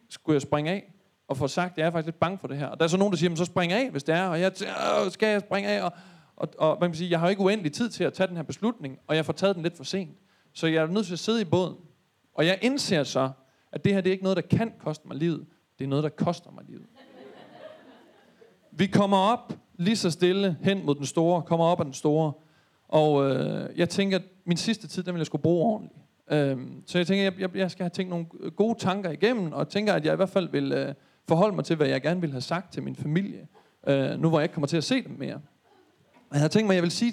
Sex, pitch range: male, 155-190 Hz